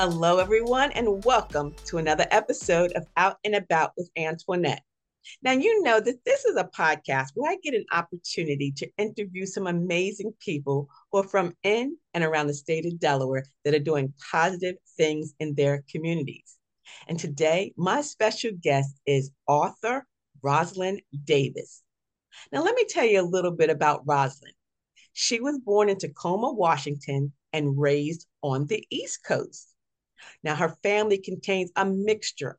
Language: English